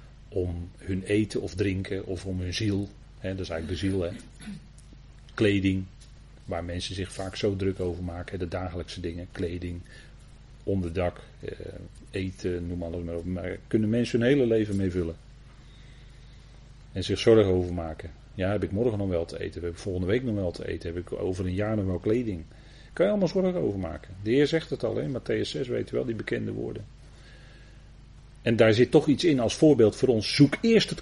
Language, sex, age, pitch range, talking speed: Dutch, male, 40-59, 95-130 Hz, 205 wpm